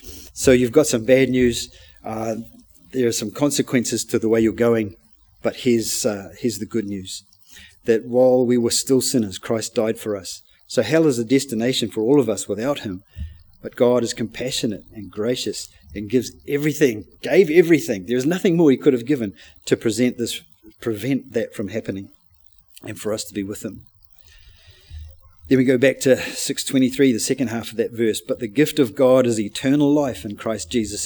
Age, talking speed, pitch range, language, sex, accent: 40-59, 190 wpm, 100-125 Hz, English, male, Australian